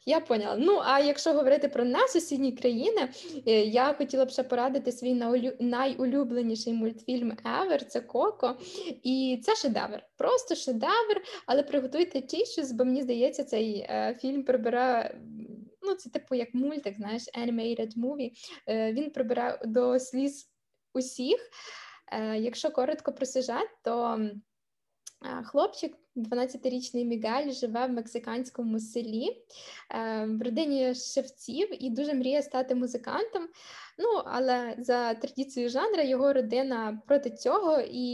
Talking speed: 125 wpm